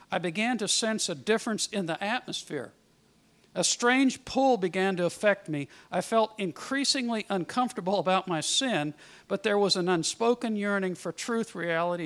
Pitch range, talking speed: 170-220 Hz, 160 wpm